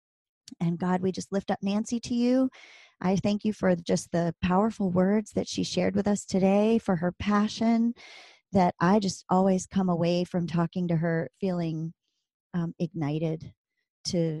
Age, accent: 30-49, American